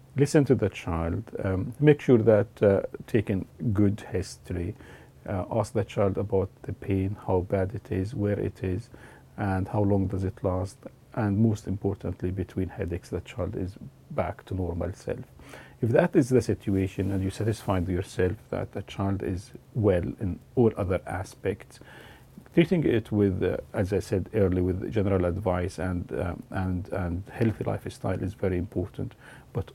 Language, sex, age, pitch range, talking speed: English, male, 40-59, 95-110 Hz, 165 wpm